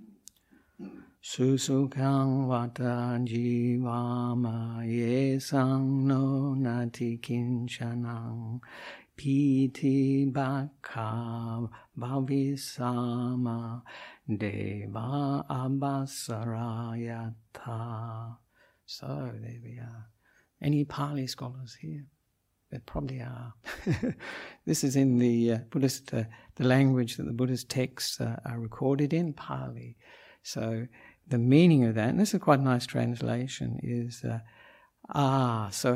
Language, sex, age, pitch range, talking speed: English, male, 60-79, 115-135 Hz, 95 wpm